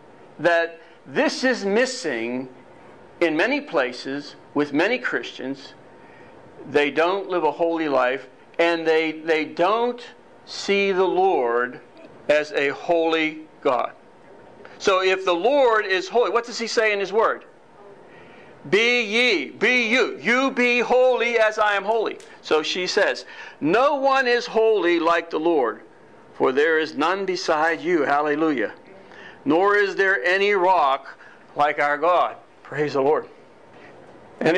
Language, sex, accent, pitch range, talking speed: English, male, American, 165-250 Hz, 140 wpm